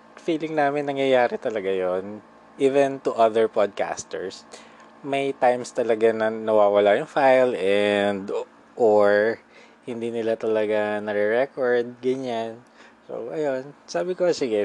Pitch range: 110-140 Hz